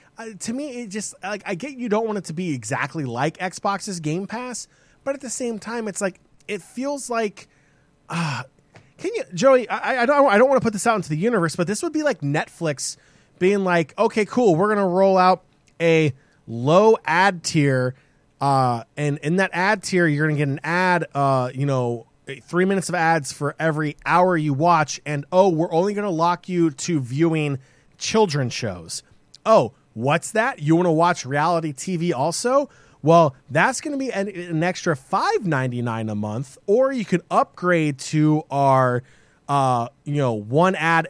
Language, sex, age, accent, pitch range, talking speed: English, male, 20-39, American, 145-195 Hz, 195 wpm